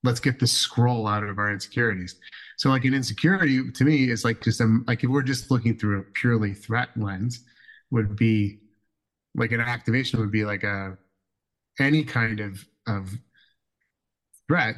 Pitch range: 105-130 Hz